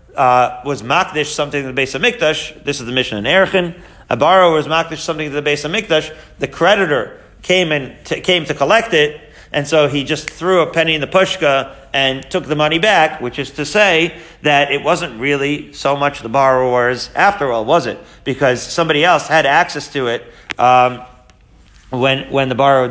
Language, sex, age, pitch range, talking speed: English, male, 40-59, 125-155 Hz, 200 wpm